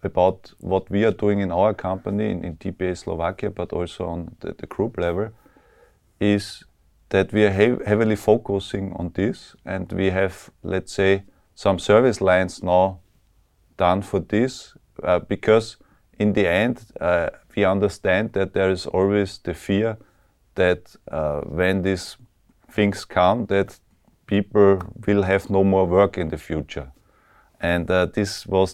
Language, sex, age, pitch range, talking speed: Slovak, male, 30-49, 90-105 Hz, 150 wpm